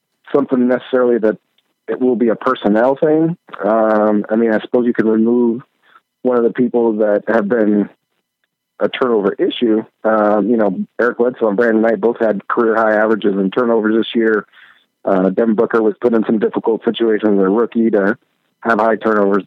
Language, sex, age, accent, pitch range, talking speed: English, male, 40-59, American, 105-120 Hz, 185 wpm